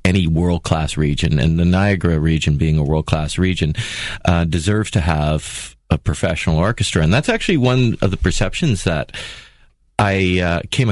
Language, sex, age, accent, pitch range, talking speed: English, male, 30-49, American, 80-100 Hz, 170 wpm